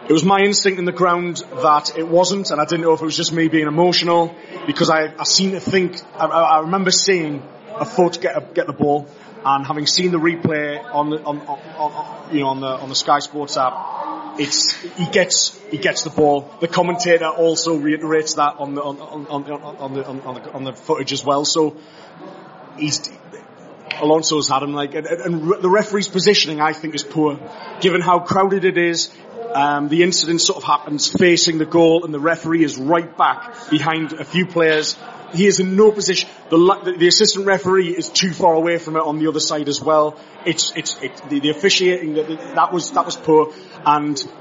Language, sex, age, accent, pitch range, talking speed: English, male, 30-49, British, 150-180 Hz, 210 wpm